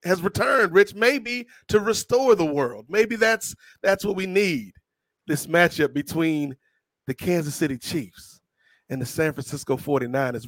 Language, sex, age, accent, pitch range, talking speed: English, male, 30-49, American, 150-205 Hz, 150 wpm